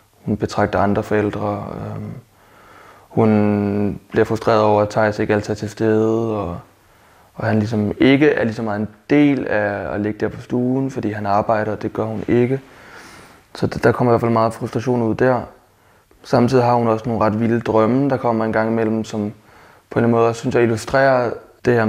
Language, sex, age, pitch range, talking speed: Danish, male, 20-39, 105-115 Hz, 190 wpm